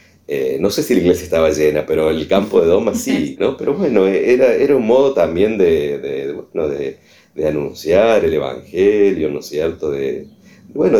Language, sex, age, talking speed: Spanish, male, 40-59, 170 wpm